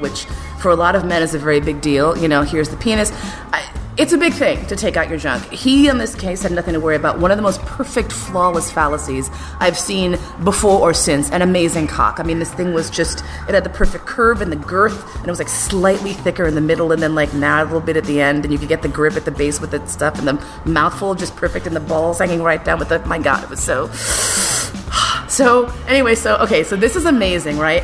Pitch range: 165-275 Hz